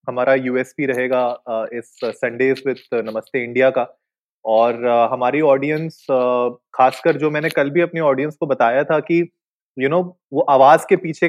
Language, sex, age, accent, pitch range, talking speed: Hindi, male, 20-39, native, 125-165 Hz, 165 wpm